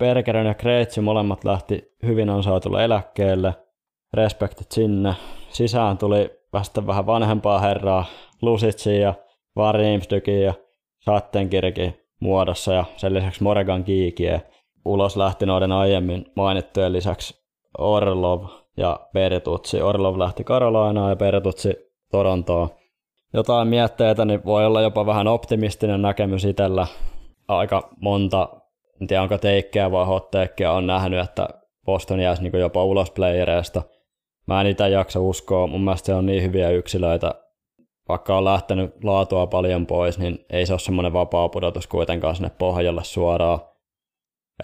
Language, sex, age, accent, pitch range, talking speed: Finnish, male, 20-39, native, 90-105 Hz, 130 wpm